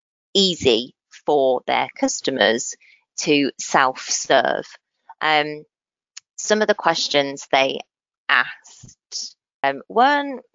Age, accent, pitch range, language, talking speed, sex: 30-49, British, 145-185 Hz, English, 85 wpm, female